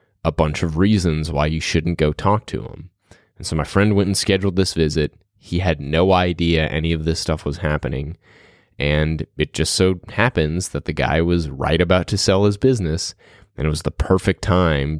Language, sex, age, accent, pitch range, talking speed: English, male, 20-39, American, 80-100 Hz, 205 wpm